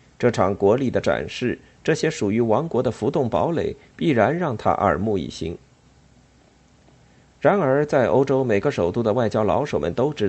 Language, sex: Chinese, male